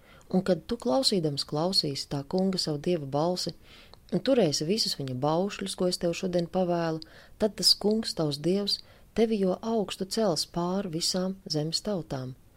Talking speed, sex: 155 wpm, female